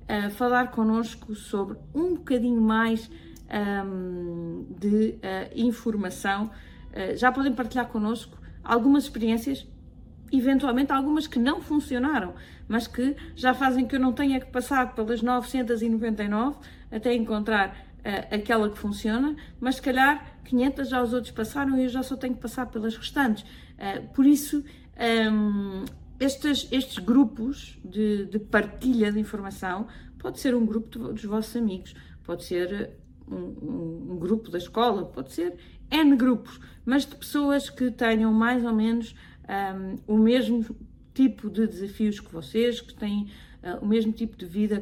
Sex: female